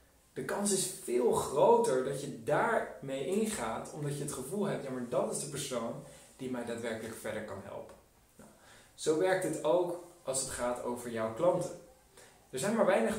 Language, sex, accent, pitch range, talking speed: Dutch, male, Dutch, 120-185 Hz, 190 wpm